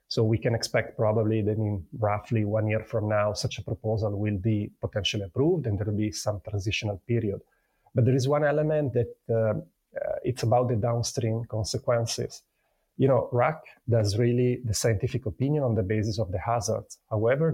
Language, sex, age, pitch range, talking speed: English, male, 30-49, 110-125 Hz, 180 wpm